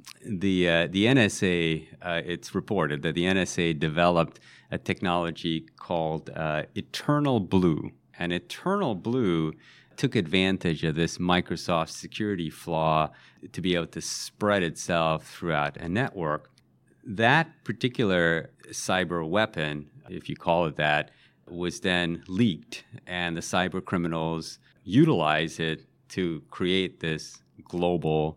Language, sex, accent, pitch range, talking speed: English, male, American, 80-95 Hz, 125 wpm